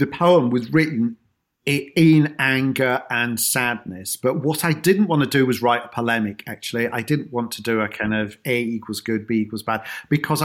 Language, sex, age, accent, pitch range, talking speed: English, male, 40-59, British, 115-155 Hz, 200 wpm